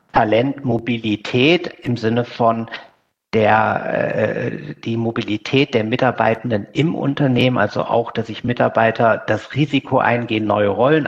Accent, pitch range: German, 110-130 Hz